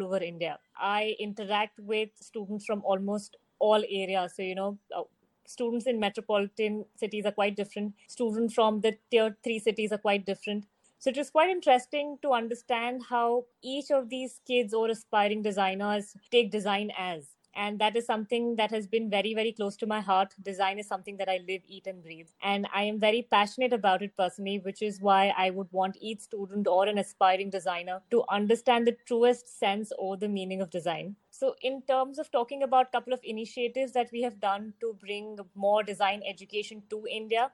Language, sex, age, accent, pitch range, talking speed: English, female, 20-39, Indian, 195-235 Hz, 190 wpm